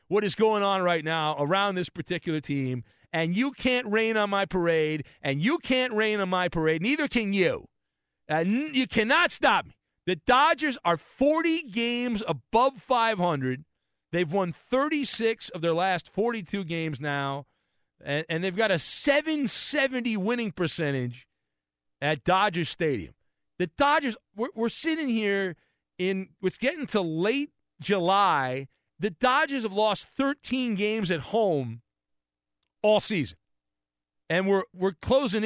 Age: 40-59